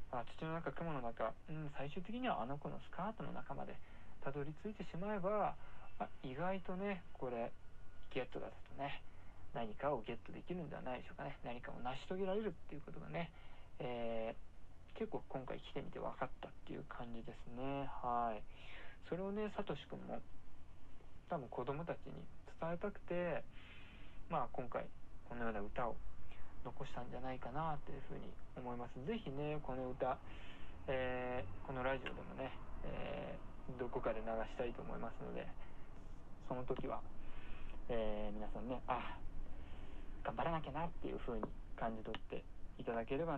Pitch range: 105-160 Hz